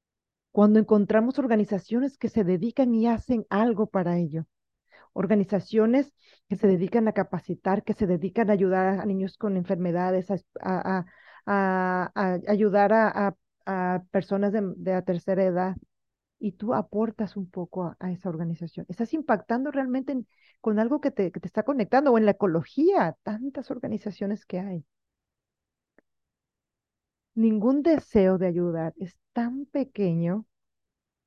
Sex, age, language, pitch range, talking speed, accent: female, 40-59, Spanish, 185-225 Hz, 135 wpm, Mexican